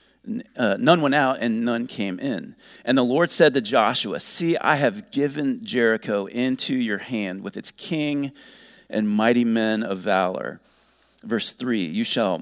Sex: male